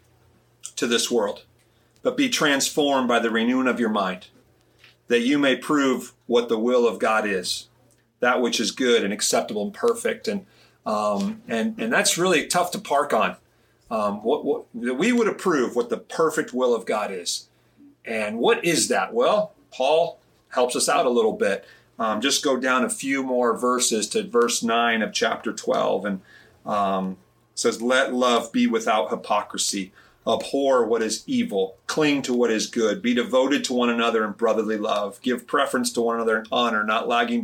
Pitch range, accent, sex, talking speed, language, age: 120-175 Hz, American, male, 180 wpm, English, 40-59